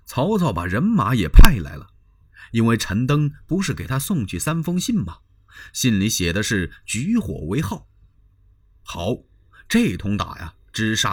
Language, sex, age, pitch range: Chinese, male, 30-49, 95-145 Hz